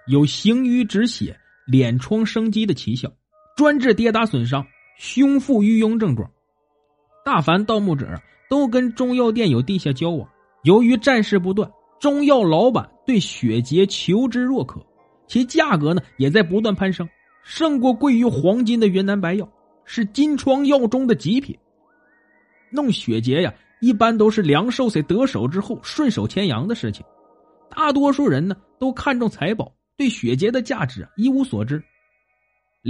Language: Chinese